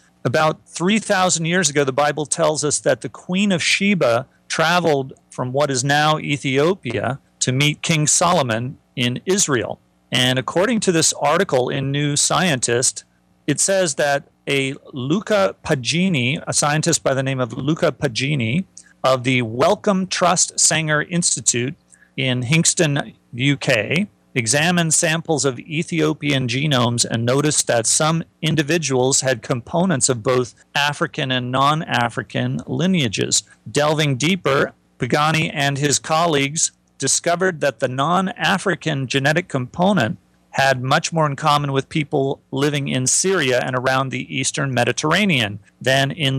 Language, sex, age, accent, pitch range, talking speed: English, male, 40-59, American, 130-160 Hz, 135 wpm